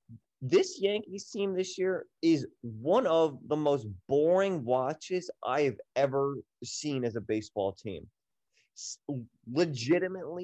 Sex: male